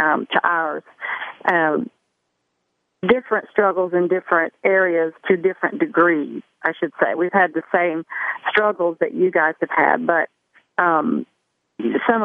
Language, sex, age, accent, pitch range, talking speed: English, female, 50-69, American, 160-190 Hz, 135 wpm